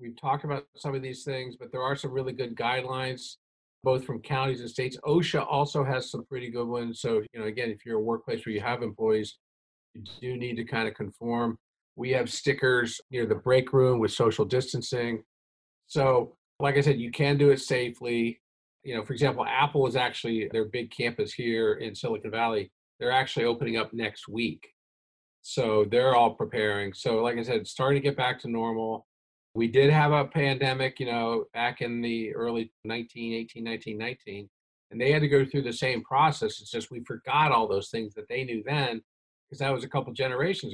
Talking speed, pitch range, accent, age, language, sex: 205 wpm, 115-135 Hz, American, 50-69, English, male